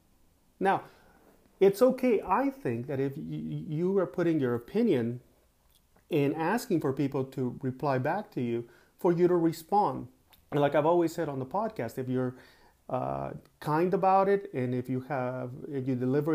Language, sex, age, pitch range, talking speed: English, male, 40-59, 125-170 Hz, 165 wpm